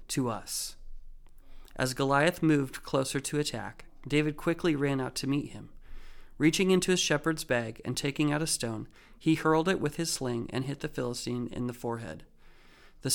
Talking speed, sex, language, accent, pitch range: 180 wpm, male, English, American, 125-155 Hz